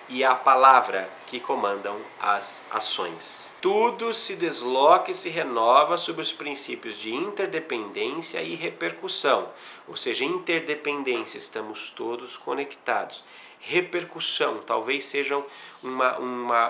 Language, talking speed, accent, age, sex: Portuguese, 110 wpm, Brazilian, 30-49, male